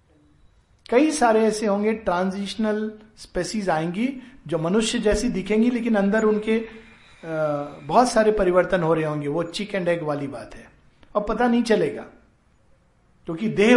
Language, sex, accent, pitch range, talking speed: Hindi, male, native, 175-235 Hz, 150 wpm